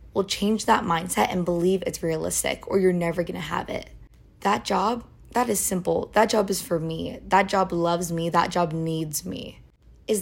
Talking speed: 195 wpm